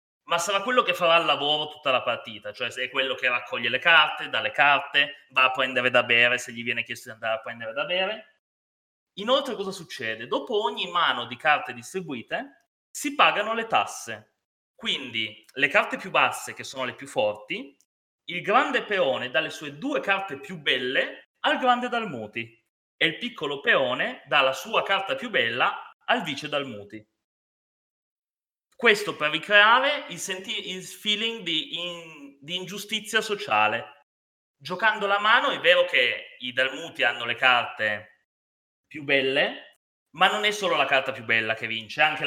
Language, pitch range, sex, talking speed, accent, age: Italian, 120-200 Hz, male, 175 wpm, native, 30-49